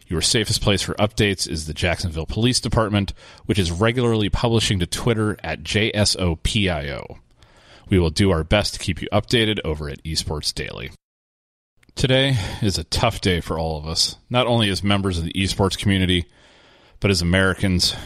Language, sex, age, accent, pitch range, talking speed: English, male, 30-49, American, 80-105 Hz, 170 wpm